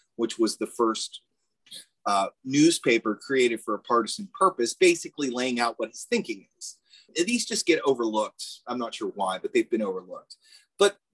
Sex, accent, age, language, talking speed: male, American, 30-49, English, 165 wpm